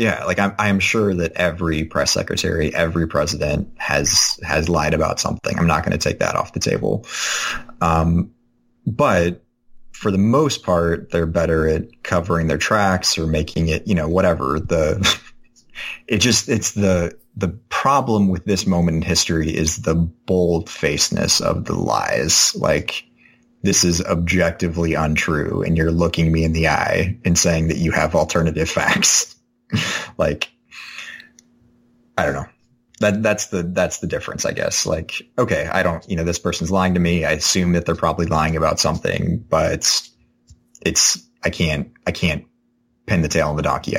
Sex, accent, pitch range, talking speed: male, American, 80-105 Hz, 170 wpm